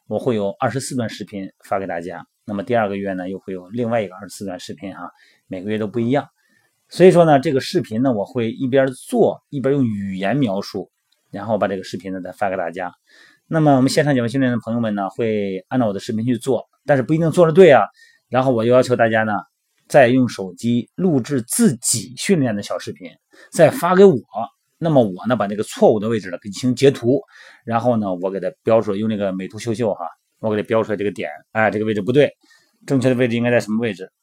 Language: Chinese